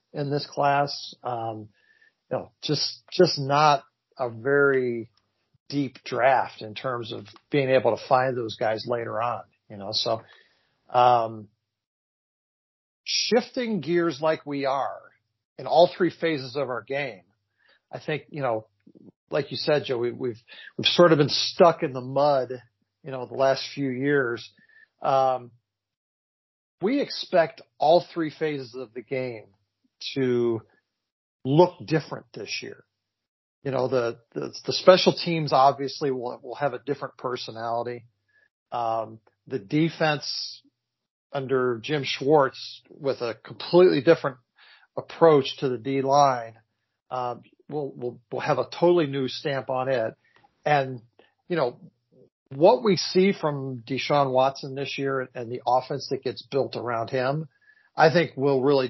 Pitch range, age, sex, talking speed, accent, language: 120-150 Hz, 50-69, male, 145 wpm, American, English